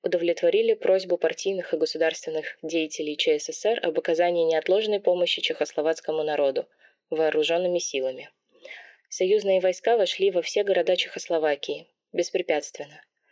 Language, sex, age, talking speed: Russian, female, 20-39, 105 wpm